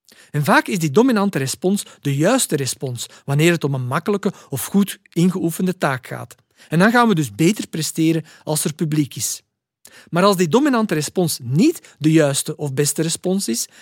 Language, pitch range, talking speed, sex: Dutch, 140-205 Hz, 180 wpm, male